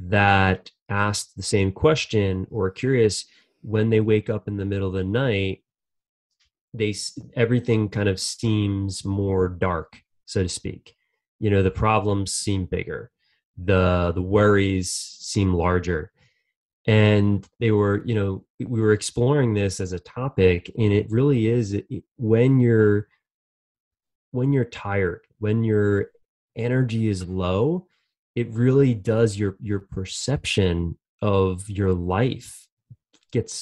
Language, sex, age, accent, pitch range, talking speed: English, male, 20-39, American, 95-120 Hz, 130 wpm